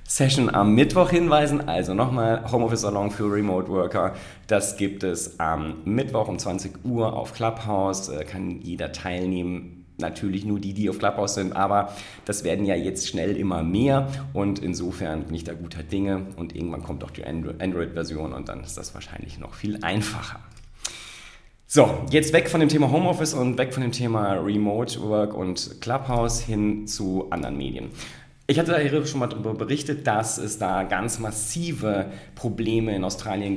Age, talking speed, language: 30-49, 160 wpm, German